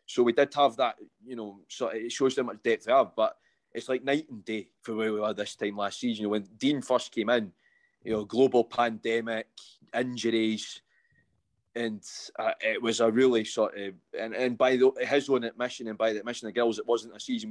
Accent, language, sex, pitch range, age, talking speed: British, English, male, 110-130 Hz, 20-39, 215 wpm